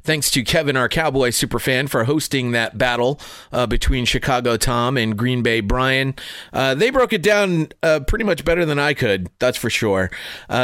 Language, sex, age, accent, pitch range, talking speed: English, male, 30-49, American, 110-150 Hz, 190 wpm